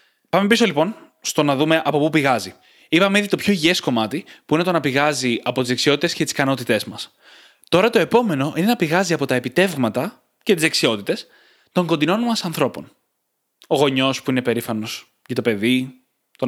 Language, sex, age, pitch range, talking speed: Greek, male, 20-39, 145-215 Hz, 190 wpm